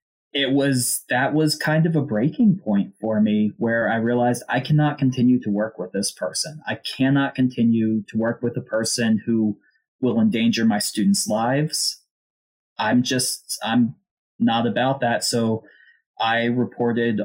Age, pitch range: 20-39, 115-155 Hz